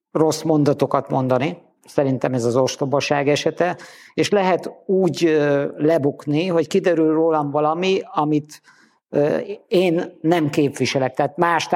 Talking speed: 110 wpm